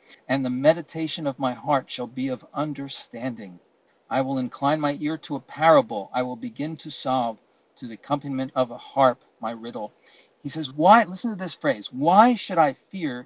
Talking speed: 190 wpm